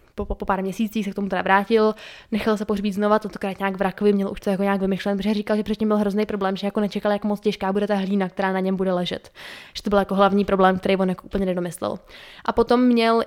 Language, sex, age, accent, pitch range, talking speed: Czech, female, 20-39, native, 200-230 Hz, 265 wpm